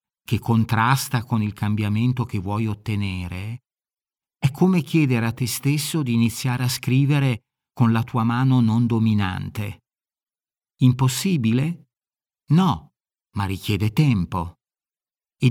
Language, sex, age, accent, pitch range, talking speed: Italian, male, 50-69, native, 105-130 Hz, 115 wpm